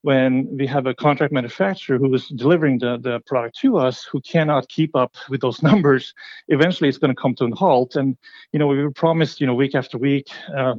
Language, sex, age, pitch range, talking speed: English, male, 30-49, 130-150 Hz, 235 wpm